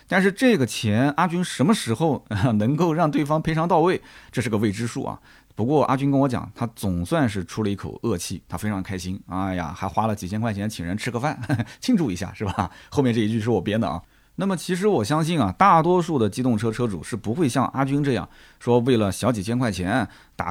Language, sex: Chinese, male